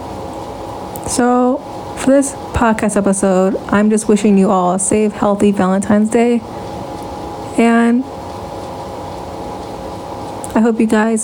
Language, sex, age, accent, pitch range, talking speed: English, female, 20-39, American, 200-235 Hz, 105 wpm